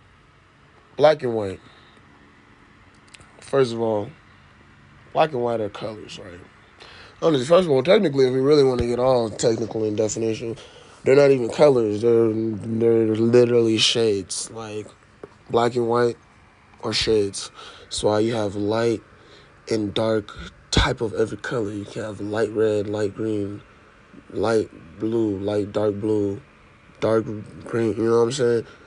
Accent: American